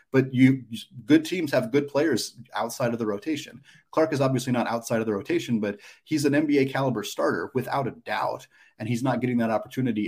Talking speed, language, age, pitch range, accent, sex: 200 wpm, English, 30-49, 105-125 Hz, American, male